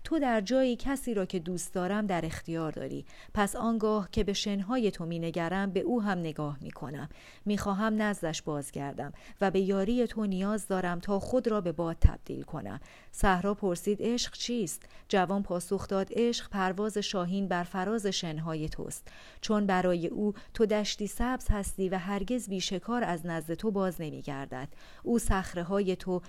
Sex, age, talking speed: female, 40-59, 165 wpm